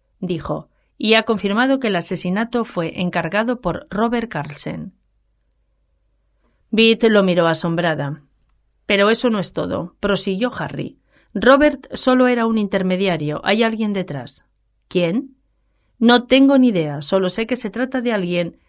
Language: Spanish